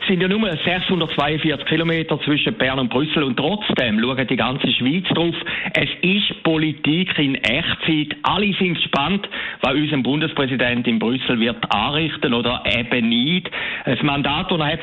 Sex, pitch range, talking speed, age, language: male, 140-180 Hz, 150 wpm, 60-79, German